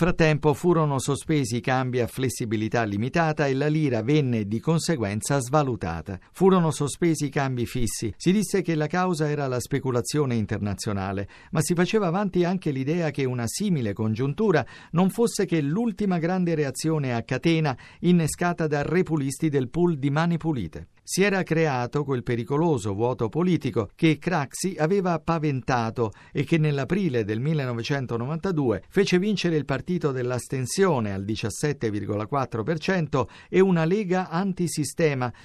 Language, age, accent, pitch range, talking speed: Italian, 50-69, native, 125-170 Hz, 140 wpm